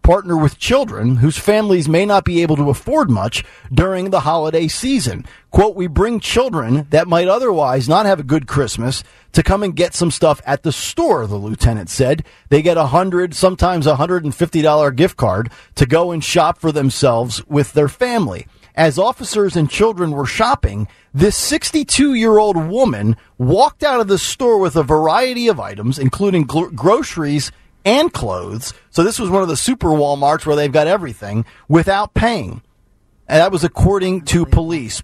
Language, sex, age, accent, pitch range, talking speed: English, male, 40-59, American, 130-190 Hz, 180 wpm